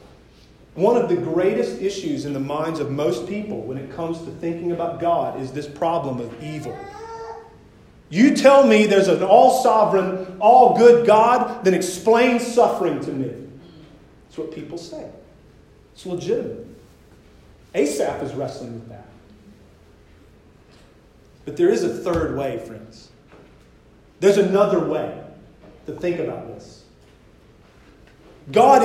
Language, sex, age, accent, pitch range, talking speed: English, male, 40-59, American, 160-240 Hz, 130 wpm